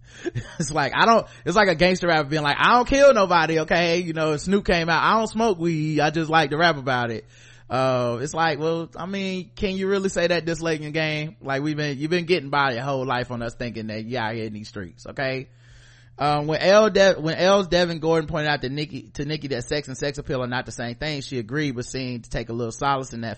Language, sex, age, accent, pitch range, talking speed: English, male, 20-39, American, 120-155 Hz, 265 wpm